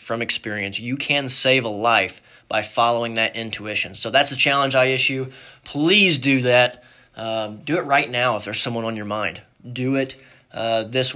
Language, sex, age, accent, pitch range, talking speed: English, male, 20-39, American, 115-135 Hz, 190 wpm